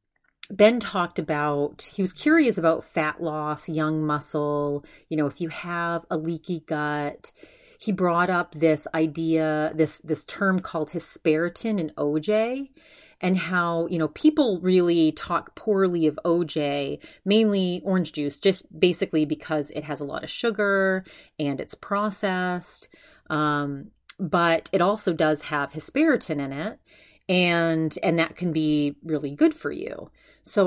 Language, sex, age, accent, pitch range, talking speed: English, female, 30-49, American, 155-195 Hz, 145 wpm